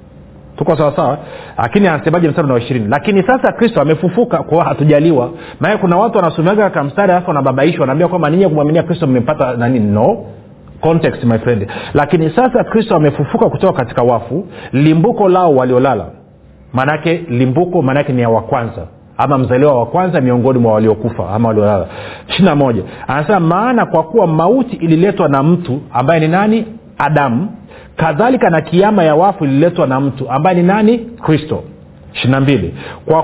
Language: Swahili